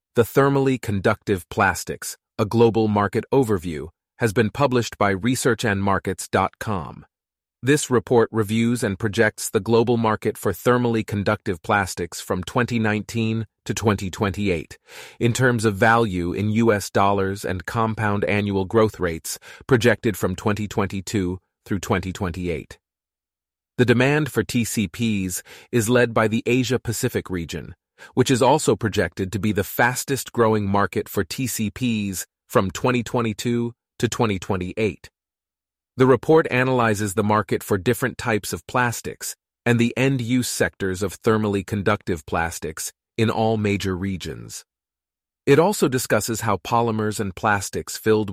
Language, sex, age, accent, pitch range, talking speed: English, male, 30-49, American, 95-115 Hz, 125 wpm